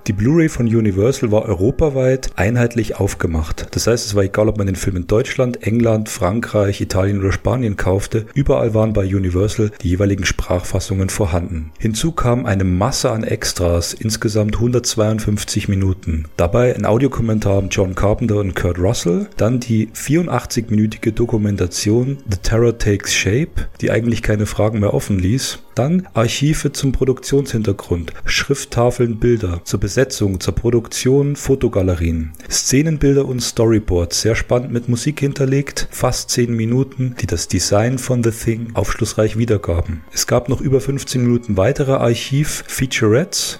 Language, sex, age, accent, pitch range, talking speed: German, male, 40-59, German, 100-125 Hz, 145 wpm